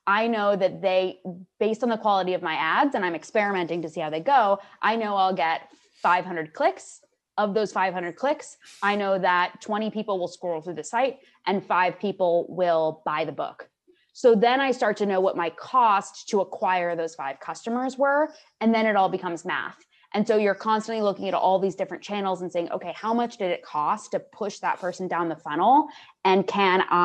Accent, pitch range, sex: American, 180-225 Hz, female